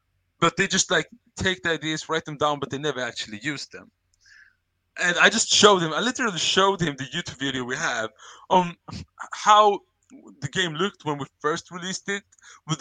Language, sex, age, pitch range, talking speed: English, male, 20-39, 135-185 Hz, 190 wpm